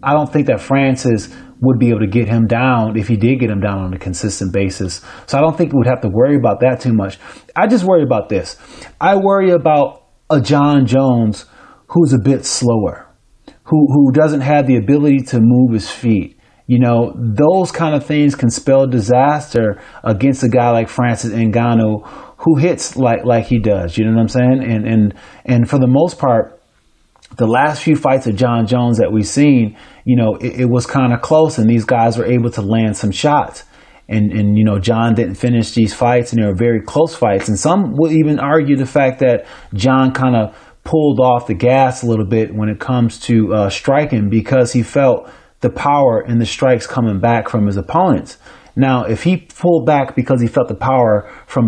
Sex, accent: male, American